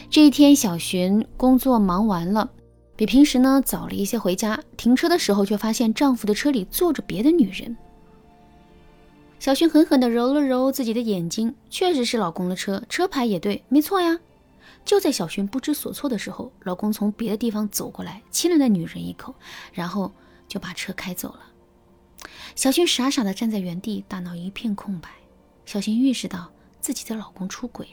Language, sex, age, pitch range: Chinese, female, 20-39, 195-265 Hz